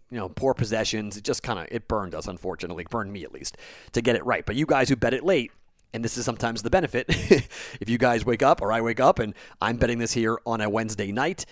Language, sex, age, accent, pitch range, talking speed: English, male, 30-49, American, 110-150 Hz, 265 wpm